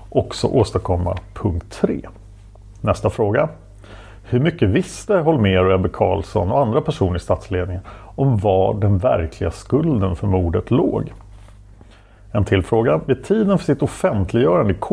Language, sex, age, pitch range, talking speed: Swedish, male, 40-59, 100-125 Hz, 135 wpm